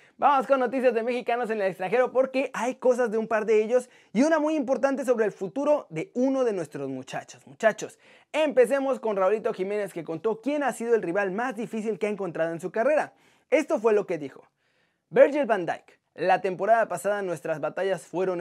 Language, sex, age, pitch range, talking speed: Spanish, male, 20-39, 180-255 Hz, 200 wpm